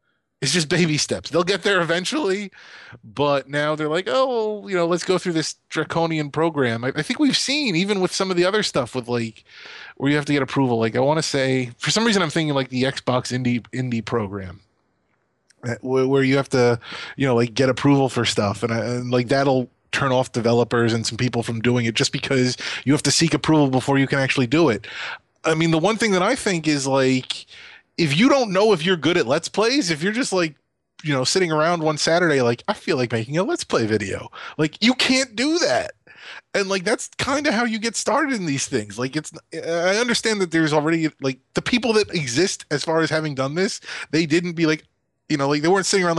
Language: English